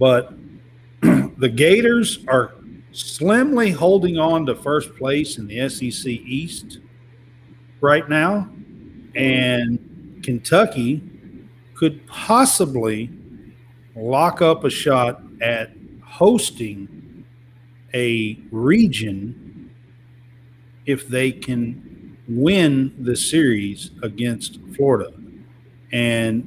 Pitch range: 120-150 Hz